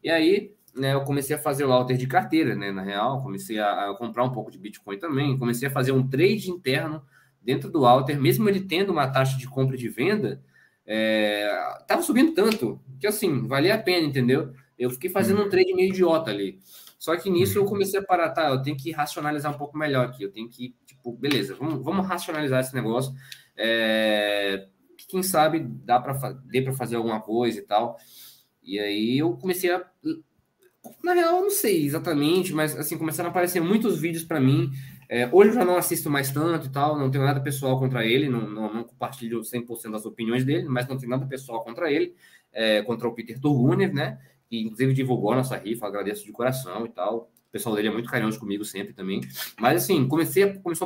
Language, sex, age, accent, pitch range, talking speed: Portuguese, male, 20-39, Brazilian, 120-170 Hz, 210 wpm